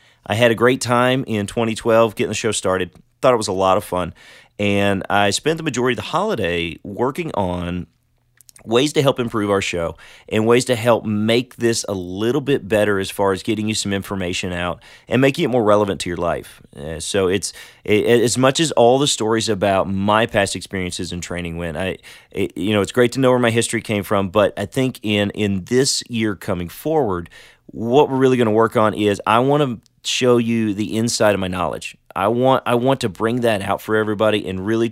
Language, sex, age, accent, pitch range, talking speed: English, male, 30-49, American, 95-120 Hz, 220 wpm